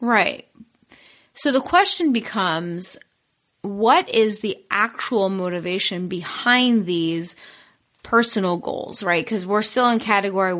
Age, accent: 20-39, American